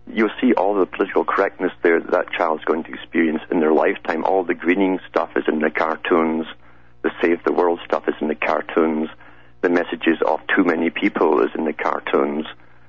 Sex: male